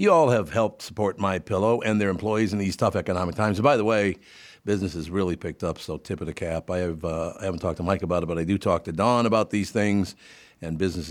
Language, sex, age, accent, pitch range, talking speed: English, male, 50-69, American, 90-115 Hz, 265 wpm